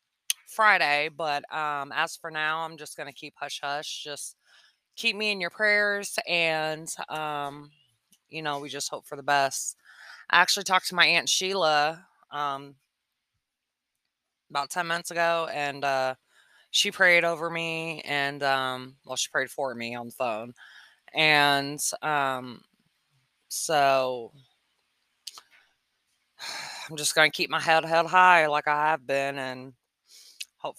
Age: 20-39